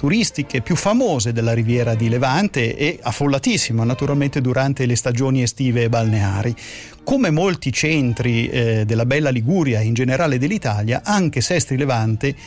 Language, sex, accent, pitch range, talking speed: Italian, male, native, 120-150 Hz, 145 wpm